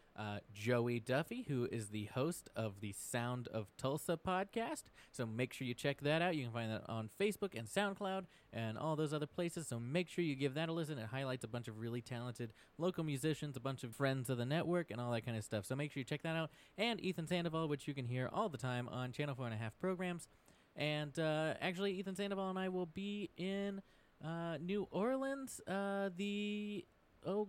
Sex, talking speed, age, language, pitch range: male, 225 wpm, 20-39, English, 120-180 Hz